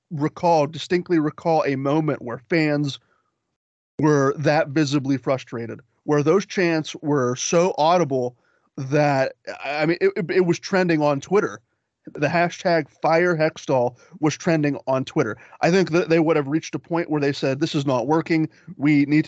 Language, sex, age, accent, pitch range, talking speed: English, male, 30-49, American, 140-170 Hz, 160 wpm